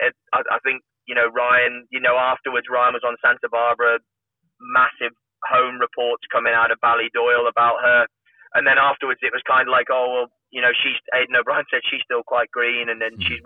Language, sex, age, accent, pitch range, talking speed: English, male, 20-39, British, 125-140 Hz, 205 wpm